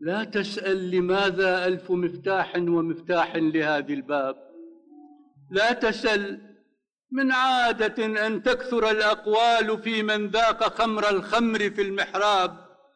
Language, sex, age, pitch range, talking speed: Arabic, male, 60-79, 180-255 Hz, 100 wpm